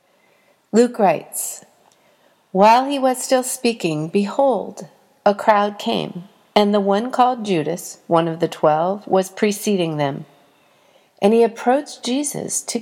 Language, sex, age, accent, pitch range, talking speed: English, female, 50-69, American, 180-240 Hz, 130 wpm